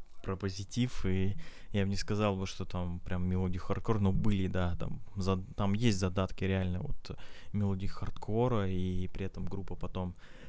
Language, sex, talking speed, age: Russian, male, 170 wpm, 20-39